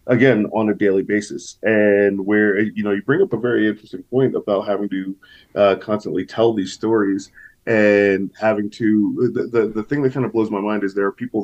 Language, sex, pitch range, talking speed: English, male, 100-120 Hz, 215 wpm